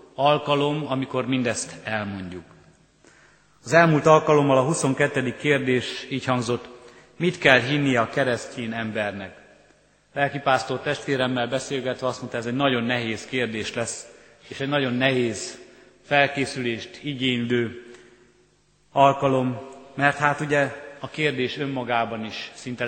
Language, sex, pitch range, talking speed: Hungarian, male, 120-140 Hz, 115 wpm